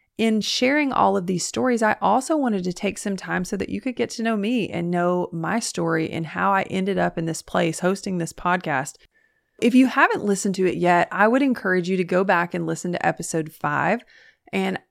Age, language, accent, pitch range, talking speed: 30-49, English, American, 170-210 Hz, 225 wpm